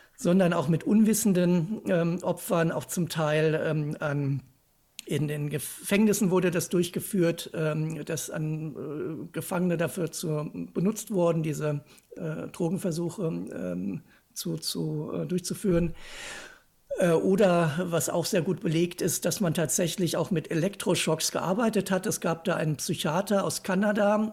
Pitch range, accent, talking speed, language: 160-190 Hz, German, 140 wpm, German